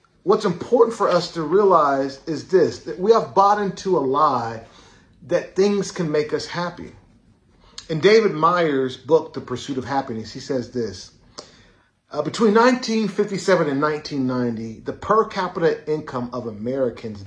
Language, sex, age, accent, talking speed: English, male, 40-59, American, 150 wpm